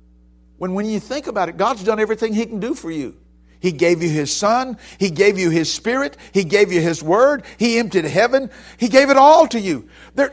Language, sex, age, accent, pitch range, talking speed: English, male, 50-69, American, 160-250 Hz, 225 wpm